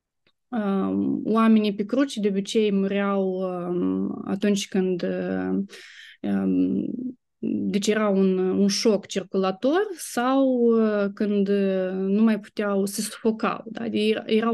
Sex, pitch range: female, 185-220 Hz